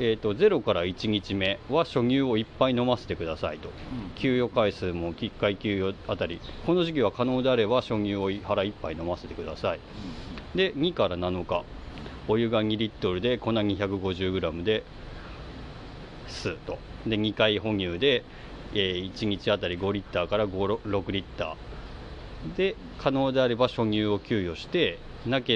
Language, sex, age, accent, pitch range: Japanese, male, 40-59, native, 90-115 Hz